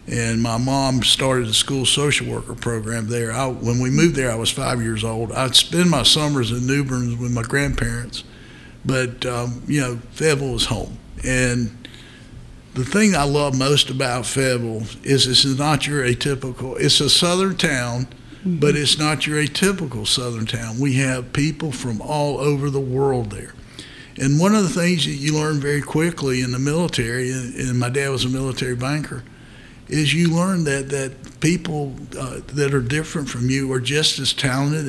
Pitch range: 125-145 Hz